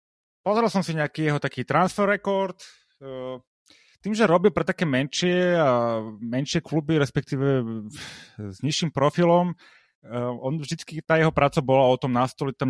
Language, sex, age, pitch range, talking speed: Slovak, male, 30-49, 120-165 Hz, 145 wpm